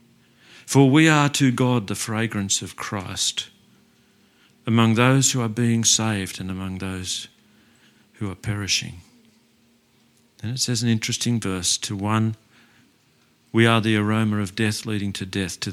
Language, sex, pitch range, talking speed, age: English, male, 100-120 Hz, 150 wpm, 50-69